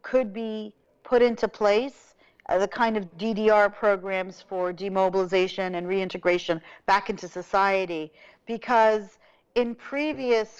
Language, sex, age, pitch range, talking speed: English, female, 40-59, 200-250 Hz, 115 wpm